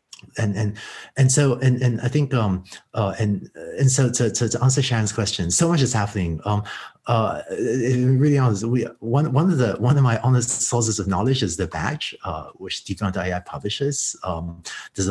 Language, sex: English, male